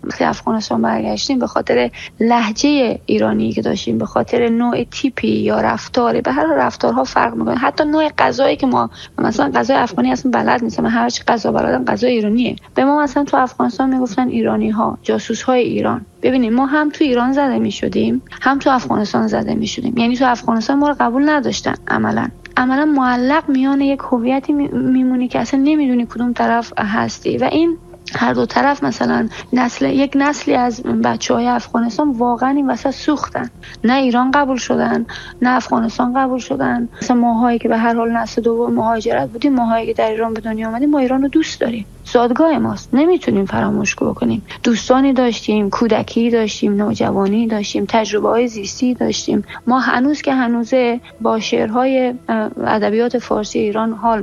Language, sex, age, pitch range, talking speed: Persian, female, 30-49, 225-270 Hz, 165 wpm